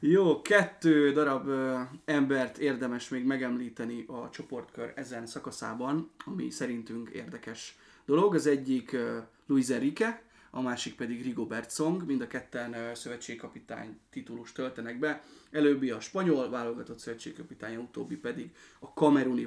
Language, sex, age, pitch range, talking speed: Hungarian, male, 30-49, 120-155 Hz, 130 wpm